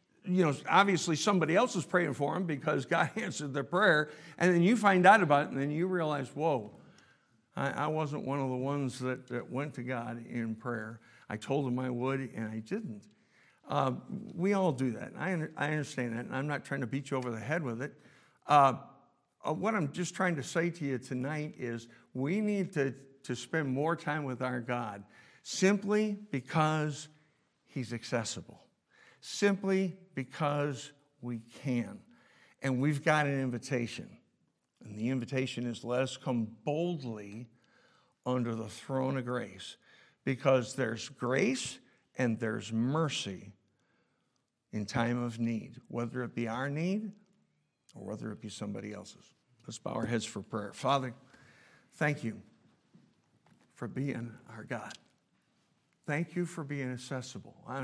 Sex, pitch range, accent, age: male, 120-160 Hz, American, 60-79